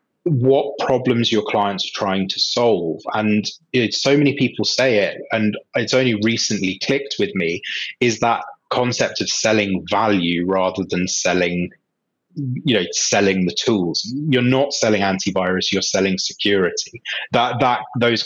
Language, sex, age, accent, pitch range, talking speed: English, male, 30-49, British, 100-135 Hz, 150 wpm